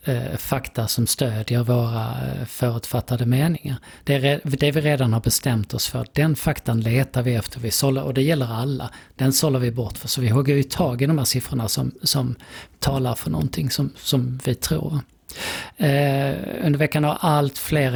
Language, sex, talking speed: Swedish, male, 175 wpm